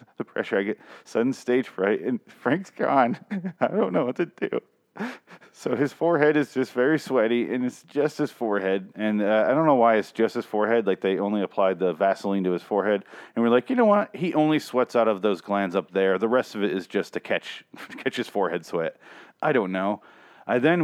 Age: 40-59